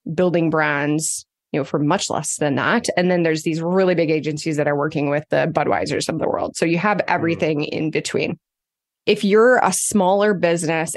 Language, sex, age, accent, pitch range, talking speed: English, female, 20-39, American, 155-200 Hz, 195 wpm